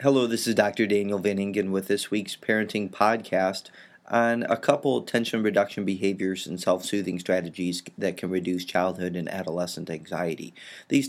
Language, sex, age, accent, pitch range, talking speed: English, male, 30-49, American, 95-110 Hz, 155 wpm